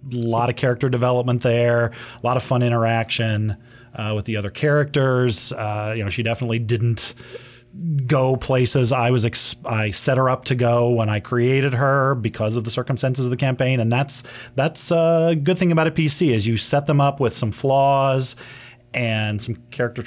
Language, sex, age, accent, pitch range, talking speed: English, male, 30-49, American, 110-130 Hz, 190 wpm